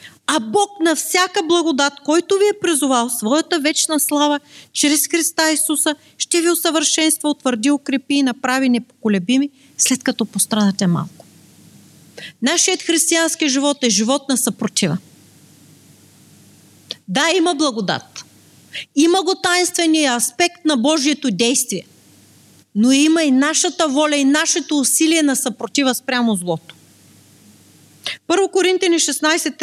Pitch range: 245-325 Hz